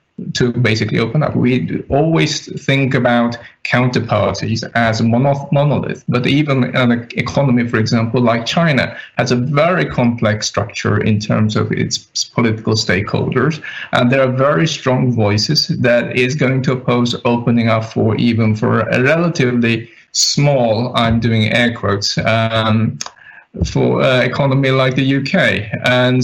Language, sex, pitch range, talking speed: English, male, 115-140 Hz, 140 wpm